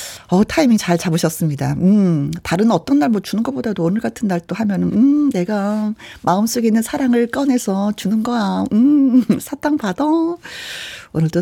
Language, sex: Korean, female